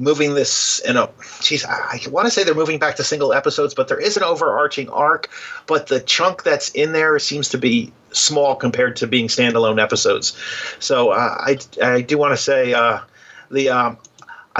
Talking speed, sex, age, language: 195 wpm, male, 40-59, English